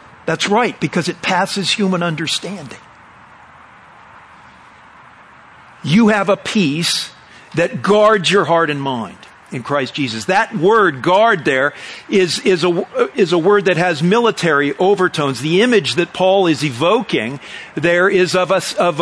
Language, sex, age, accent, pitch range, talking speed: English, male, 50-69, American, 170-215 Hz, 135 wpm